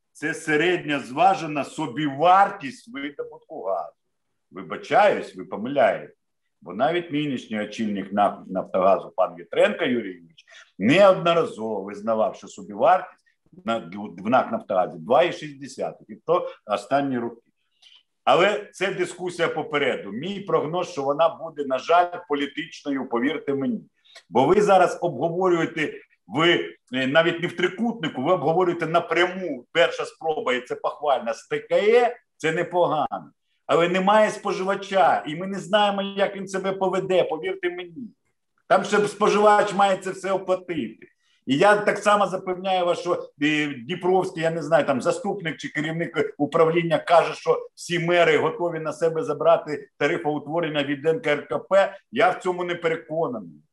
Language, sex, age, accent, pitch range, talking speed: Ukrainian, male, 50-69, native, 150-195 Hz, 130 wpm